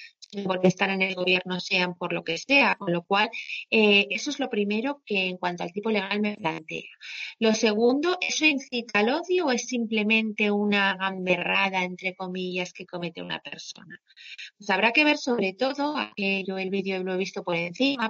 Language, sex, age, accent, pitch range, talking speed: Spanish, female, 30-49, Spanish, 185-220 Hz, 190 wpm